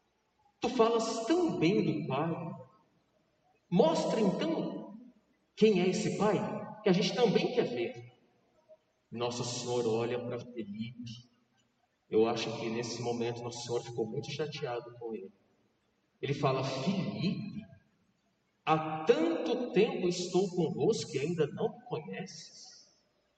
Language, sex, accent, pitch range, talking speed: Portuguese, male, Brazilian, 145-220 Hz, 125 wpm